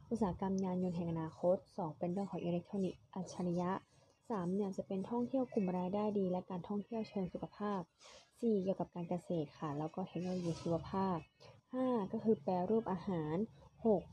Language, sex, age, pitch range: Thai, female, 20-39, 175-215 Hz